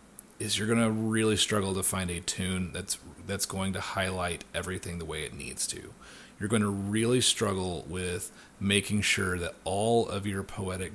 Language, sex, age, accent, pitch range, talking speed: English, male, 30-49, American, 90-105 Hz, 185 wpm